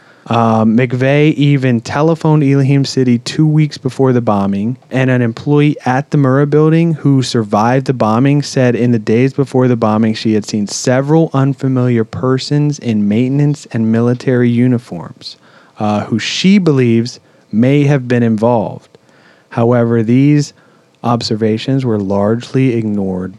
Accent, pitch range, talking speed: American, 115-140 Hz, 140 wpm